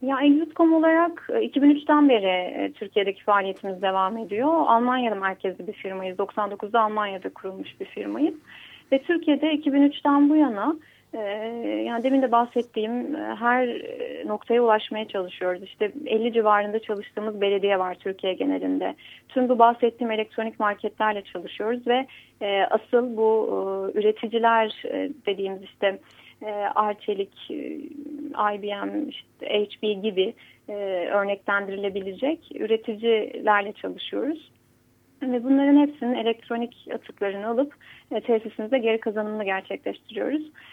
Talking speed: 105 wpm